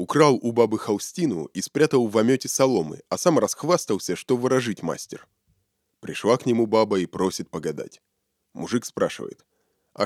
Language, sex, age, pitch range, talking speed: Russian, male, 20-39, 90-125 Hz, 150 wpm